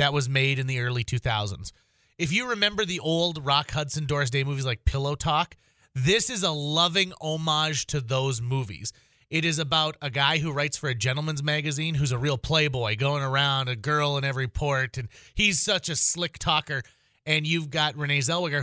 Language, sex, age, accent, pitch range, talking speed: English, male, 30-49, American, 130-165 Hz, 195 wpm